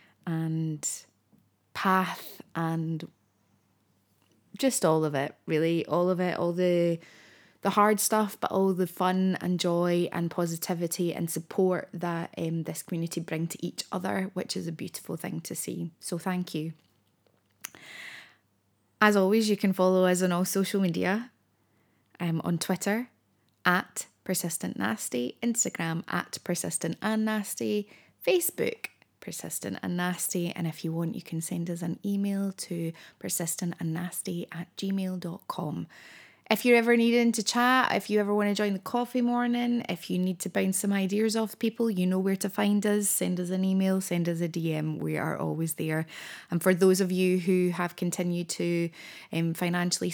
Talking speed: 165 wpm